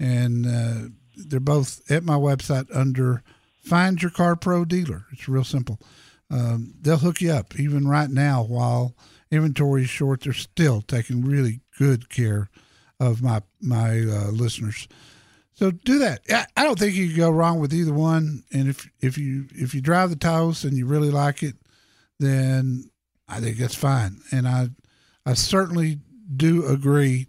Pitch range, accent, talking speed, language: 120-155 Hz, American, 170 wpm, English